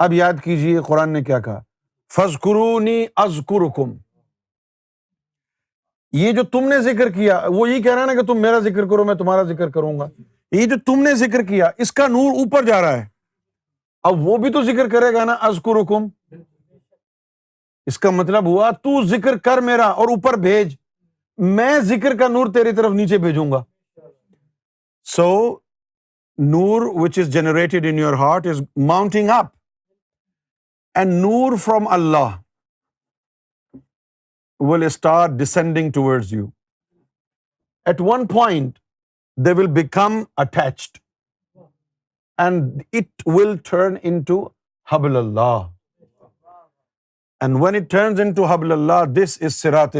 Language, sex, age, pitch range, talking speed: Urdu, male, 50-69, 145-210 Hz, 140 wpm